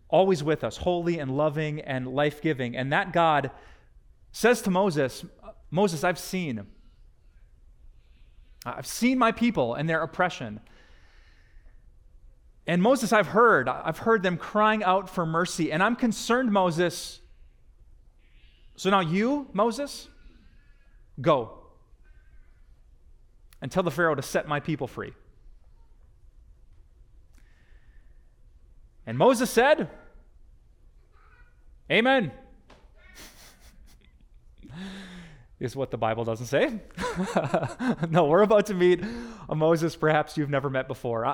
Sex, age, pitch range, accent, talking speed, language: male, 30-49, 115-185 Hz, American, 110 wpm, English